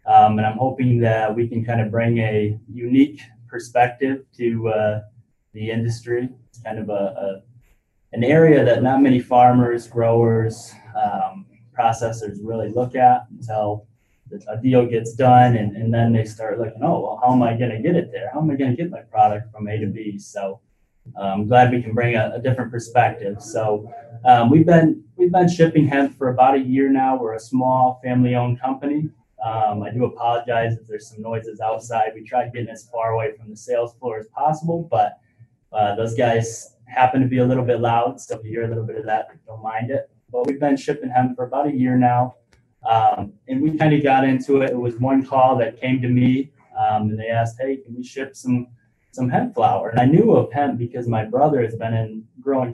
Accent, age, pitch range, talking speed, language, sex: American, 10-29, 115-130 Hz, 215 wpm, English, male